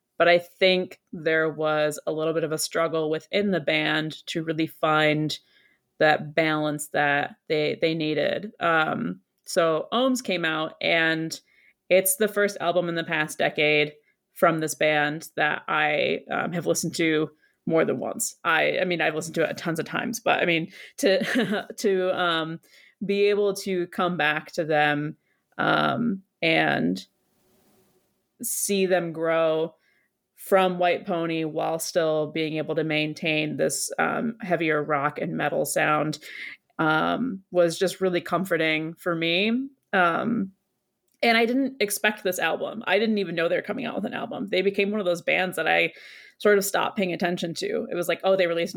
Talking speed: 170 wpm